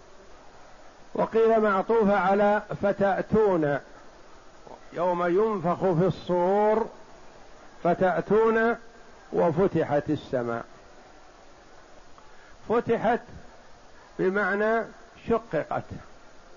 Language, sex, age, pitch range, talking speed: Arabic, male, 50-69, 170-205 Hz, 50 wpm